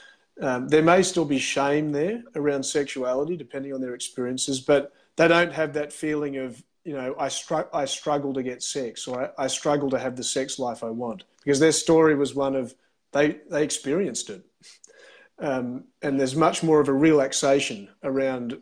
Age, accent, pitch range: 40-59, Australian, 135-160 Hz